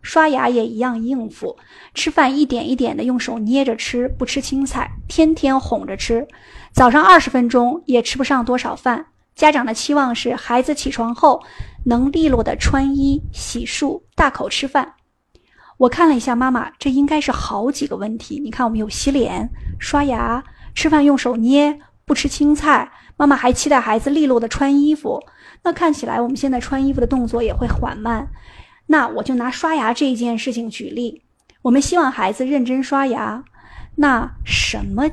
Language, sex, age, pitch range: Chinese, female, 20-39, 240-295 Hz